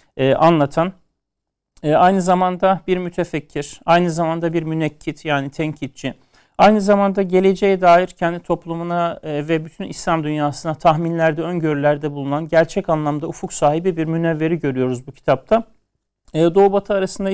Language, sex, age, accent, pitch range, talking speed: Turkish, male, 40-59, native, 165-195 Hz, 140 wpm